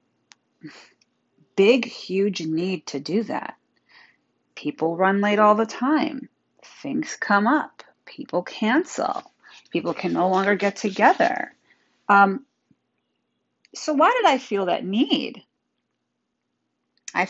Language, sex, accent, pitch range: English, female, American, 175-285 Hz